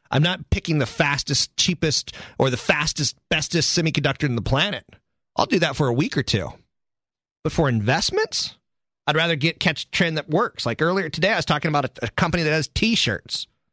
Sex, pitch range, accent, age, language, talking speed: male, 115-165 Hz, American, 30-49, English, 195 wpm